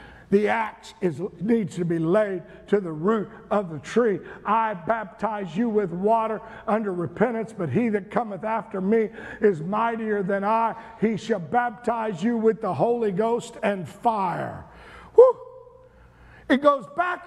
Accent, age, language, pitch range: American, 50-69, English, 165-225 Hz